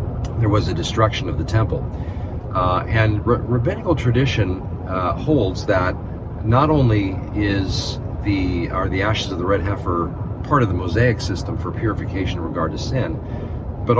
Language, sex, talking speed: English, male, 160 wpm